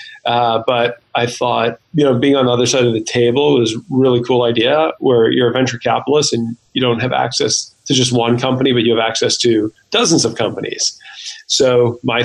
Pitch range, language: 115-130 Hz, English